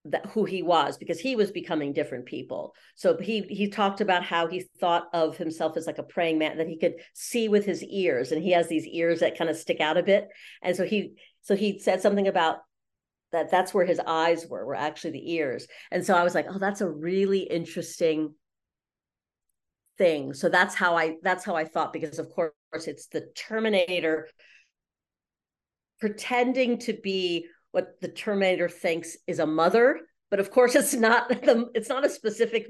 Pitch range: 170-220 Hz